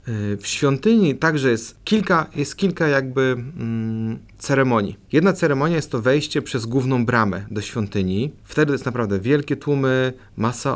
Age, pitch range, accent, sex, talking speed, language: 30-49, 110-145 Hz, native, male, 135 wpm, Polish